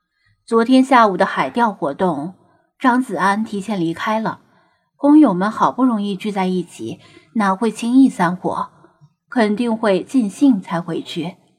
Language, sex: Chinese, female